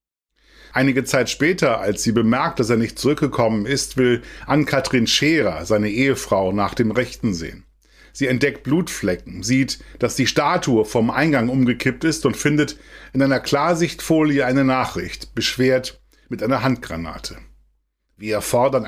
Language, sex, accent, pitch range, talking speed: German, male, German, 110-135 Hz, 145 wpm